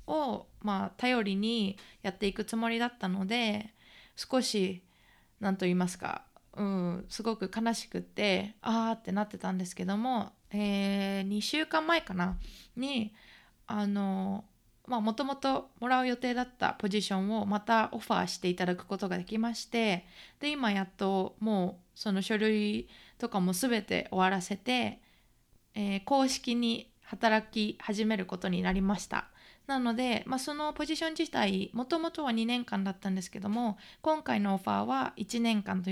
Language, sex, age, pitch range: Japanese, female, 20-39, 195-240 Hz